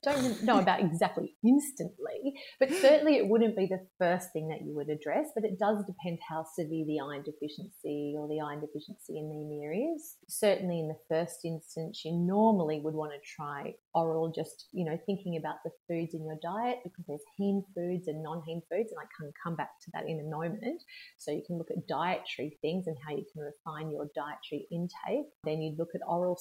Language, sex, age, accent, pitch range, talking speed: English, female, 30-49, Australian, 155-195 Hz, 210 wpm